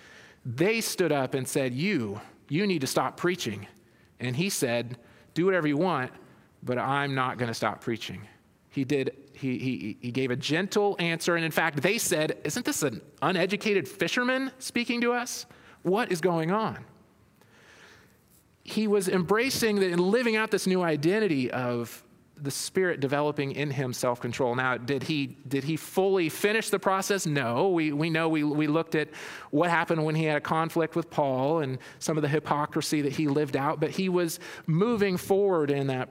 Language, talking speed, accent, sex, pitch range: English, 185 wpm, American, male, 135-185 Hz